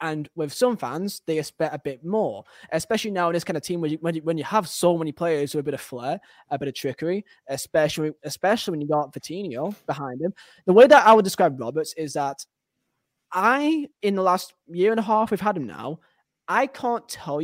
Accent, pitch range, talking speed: British, 150-195 Hz, 230 wpm